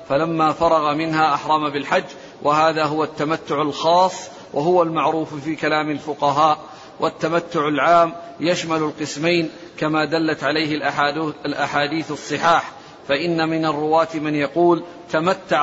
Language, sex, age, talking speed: Arabic, male, 40-59, 110 wpm